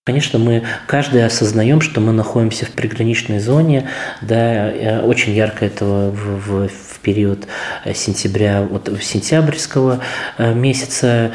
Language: Russian